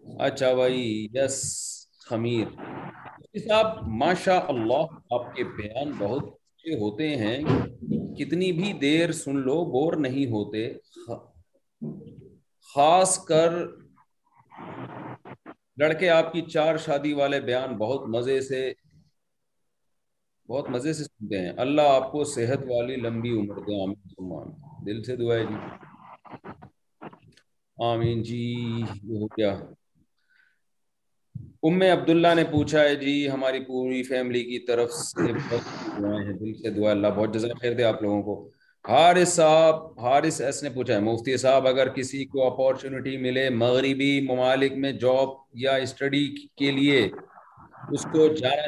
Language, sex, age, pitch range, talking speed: Urdu, male, 40-59, 120-150 Hz, 115 wpm